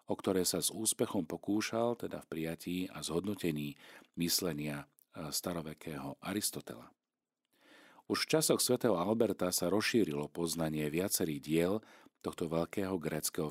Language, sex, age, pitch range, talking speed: Slovak, male, 40-59, 85-110 Hz, 120 wpm